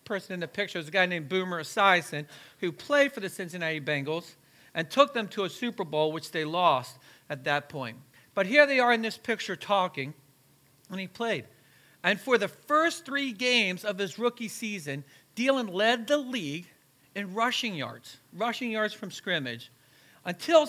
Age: 50-69